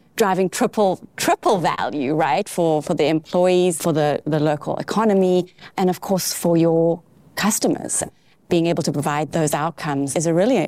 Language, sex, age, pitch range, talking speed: English, female, 30-49, 155-190 Hz, 165 wpm